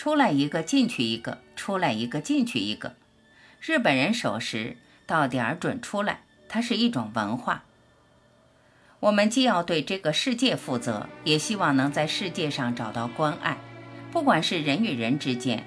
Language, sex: Chinese, female